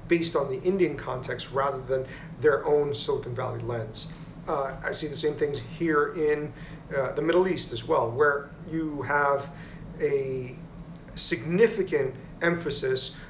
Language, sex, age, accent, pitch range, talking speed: English, male, 40-59, American, 140-170 Hz, 145 wpm